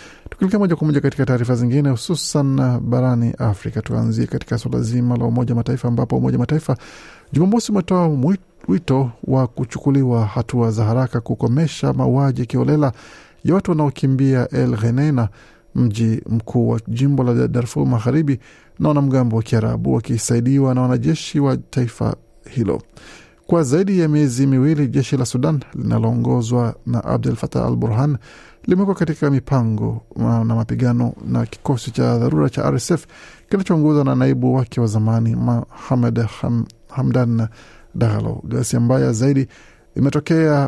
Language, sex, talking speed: Swahili, male, 130 wpm